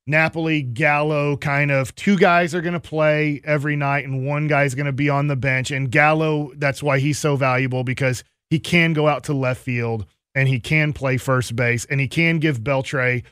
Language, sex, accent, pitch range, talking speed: English, male, American, 135-190 Hz, 215 wpm